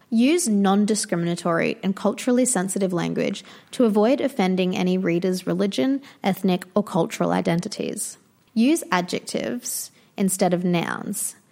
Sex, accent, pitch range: female, Australian, 180-225 Hz